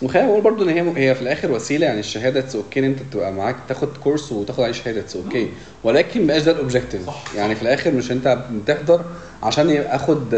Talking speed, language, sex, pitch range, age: 190 wpm, Arabic, male, 115-150 Hz, 40-59